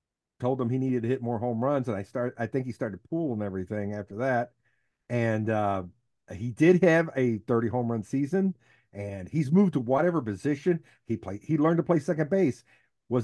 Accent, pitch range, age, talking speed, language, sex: American, 115-145 Hz, 50-69, 205 wpm, English, male